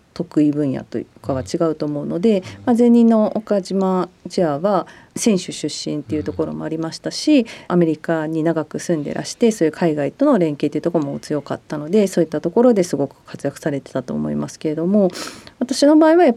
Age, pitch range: 40-59, 150-205 Hz